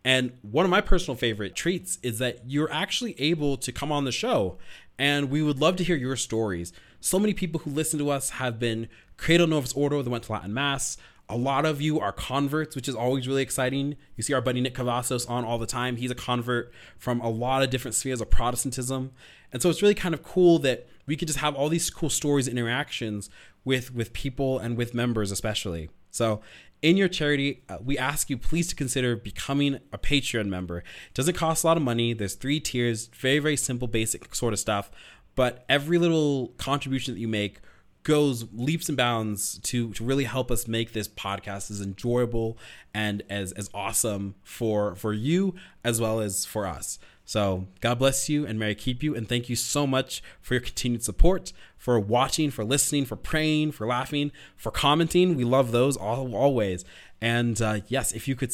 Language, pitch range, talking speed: English, 110-145 Hz, 205 wpm